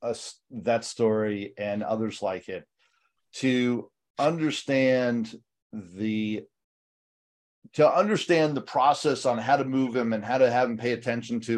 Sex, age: male, 40-59